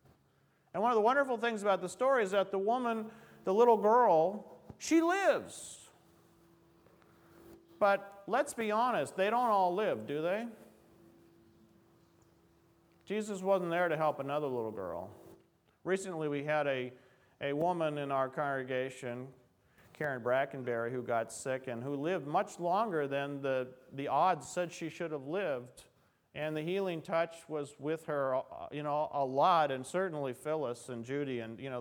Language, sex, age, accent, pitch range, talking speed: English, male, 40-59, American, 130-180 Hz, 155 wpm